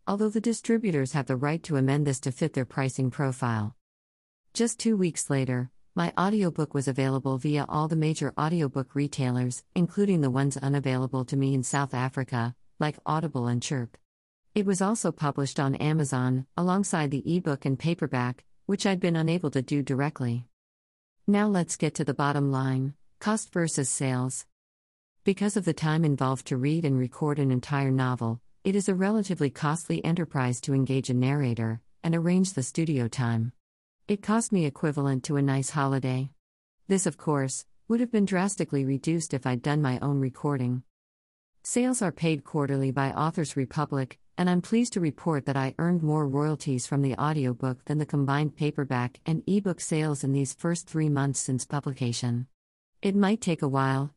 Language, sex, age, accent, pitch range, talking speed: English, female, 50-69, American, 130-165 Hz, 175 wpm